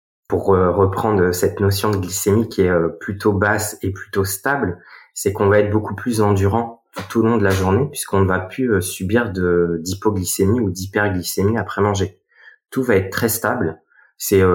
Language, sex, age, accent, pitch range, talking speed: French, male, 20-39, French, 90-105 Hz, 175 wpm